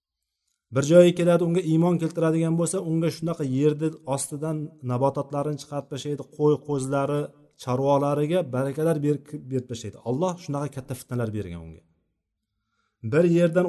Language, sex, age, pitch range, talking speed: Russian, male, 40-59, 115-155 Hz, 105 wpm